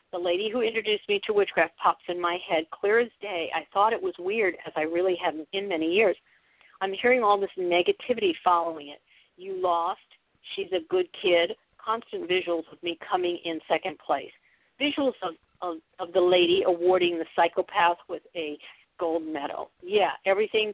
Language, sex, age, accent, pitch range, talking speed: English, female, 50-69, American, 170-220 Hz, 180 wpm